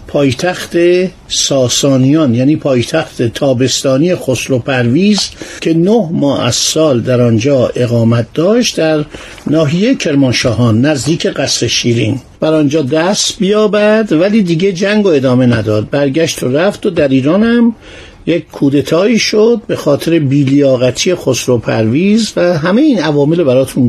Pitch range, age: 125-170 Hz, 50-69